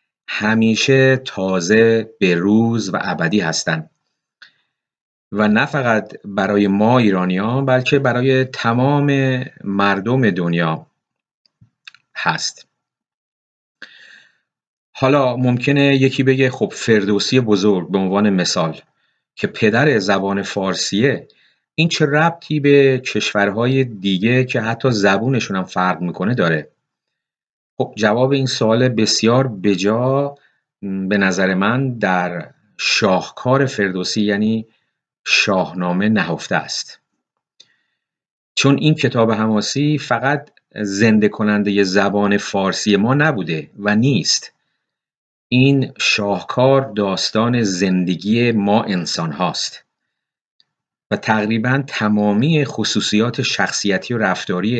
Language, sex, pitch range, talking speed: Persian, male, 100-130 Hz, 95 wpm